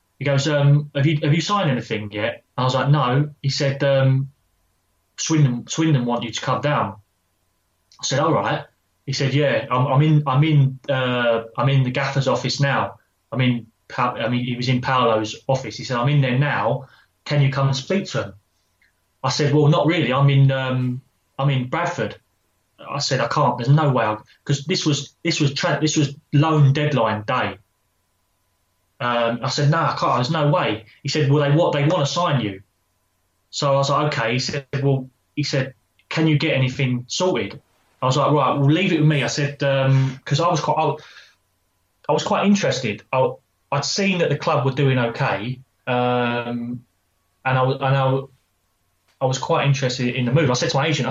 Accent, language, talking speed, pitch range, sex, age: British, English, 210 wpm, 120-145 Hz, male, 20-39